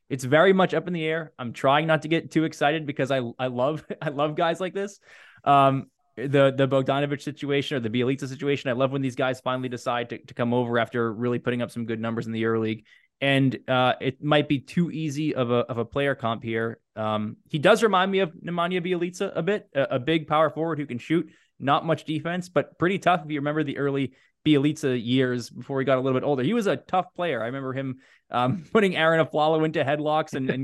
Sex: male